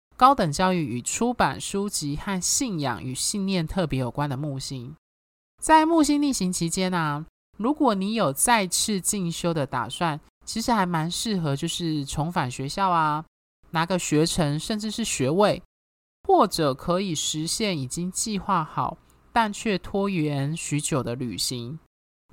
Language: Chinese